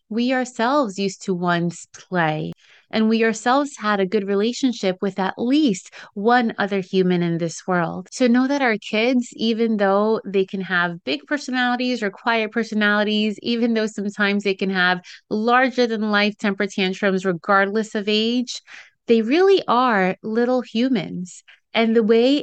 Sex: female